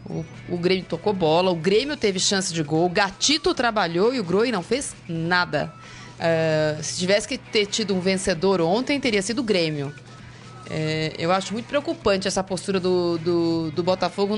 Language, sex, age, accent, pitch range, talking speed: Portuguese, female, 20-39, Brazilian, 180-245 Hz, 165 wpm